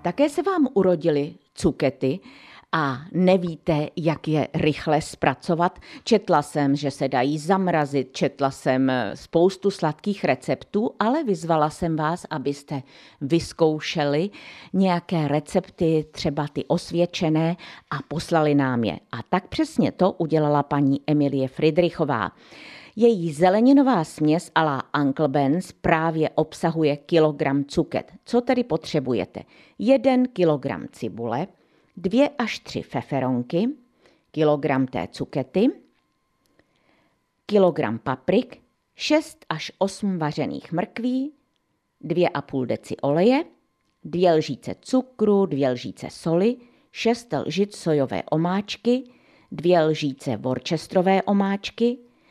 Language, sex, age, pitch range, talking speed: Czech, female, 50-69, 145-195 Hz, 105 wpm